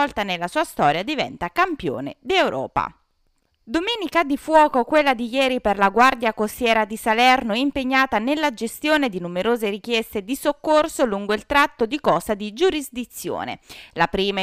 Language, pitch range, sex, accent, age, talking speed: Italian, 200-265 Hz, female, native, 20-39, 150 wpm